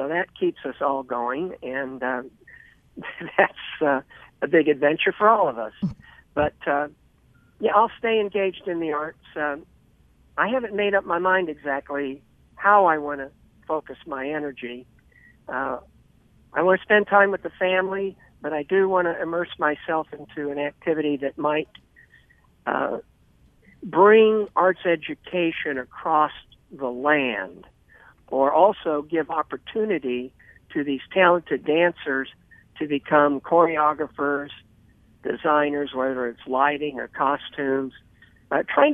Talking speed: 135 wpm